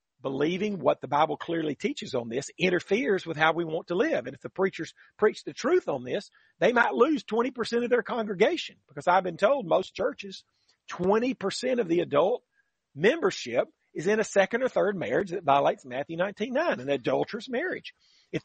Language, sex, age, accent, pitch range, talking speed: English, male, 40-59, American, 170-235 Hz, 185 wpm